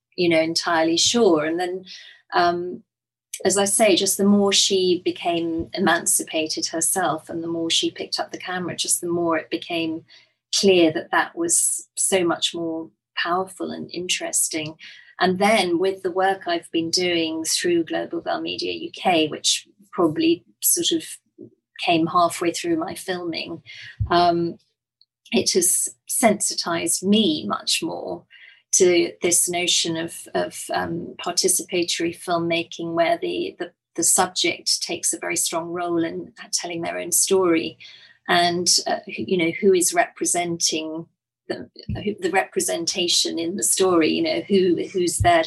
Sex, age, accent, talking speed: female, 30-49, British, 145 wpm